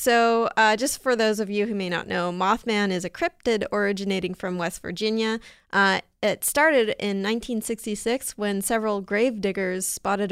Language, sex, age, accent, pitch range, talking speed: English, female, 30-49, American, 190-230 Hz, 170 wpm